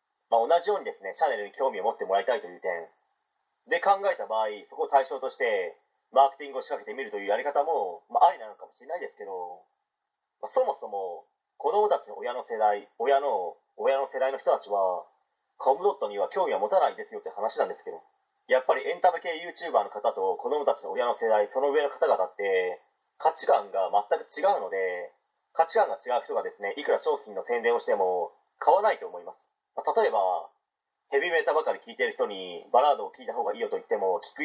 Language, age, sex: Japanese, 30-49, male